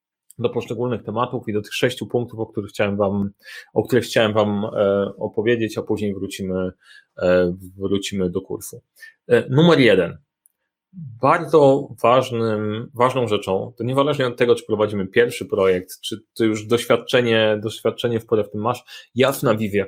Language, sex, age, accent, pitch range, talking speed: Polish, male, 30-49, native, 105-135 Hz, 155 wpm